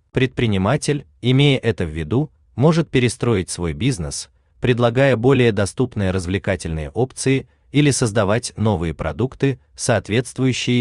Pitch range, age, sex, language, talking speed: 90-130 Hz, 30-49, male, Turkish, 105 wpm